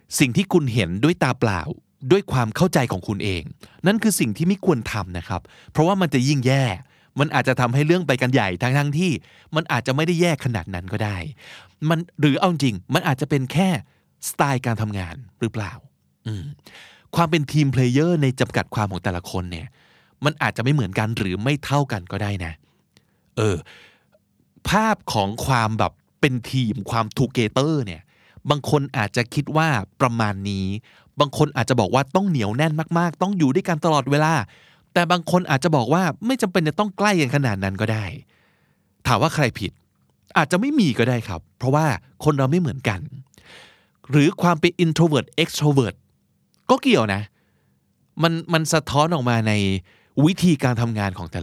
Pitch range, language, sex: 110-160 Hz, Thai, male